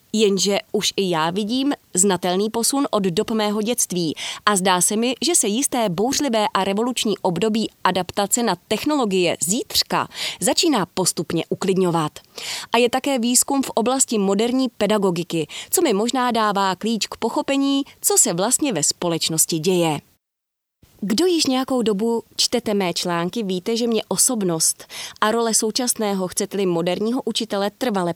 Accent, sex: native, female